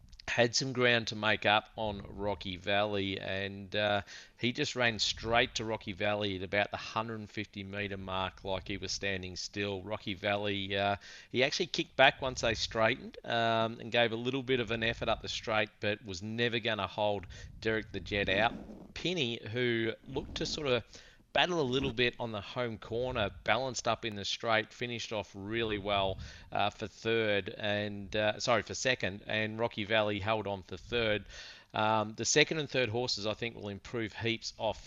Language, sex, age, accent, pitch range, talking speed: English, male, 40-59, Australian, 100-115 Hz, 190 wpm